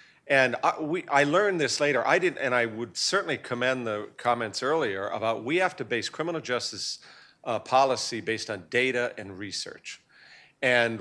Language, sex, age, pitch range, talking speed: English, male, 50-69, 110-135 Hz, 175 wpm